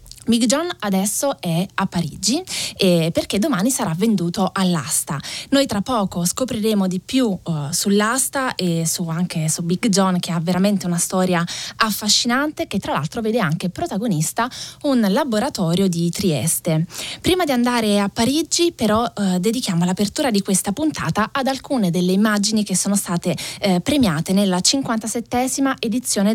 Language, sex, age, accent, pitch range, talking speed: Italian, female, 20-39, native, 175-225 Hz, 150 wpm